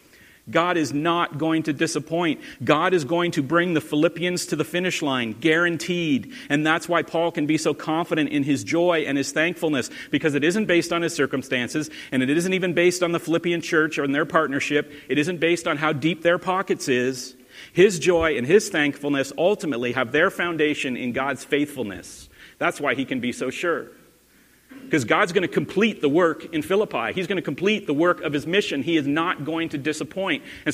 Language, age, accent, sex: English, 40-59, American, male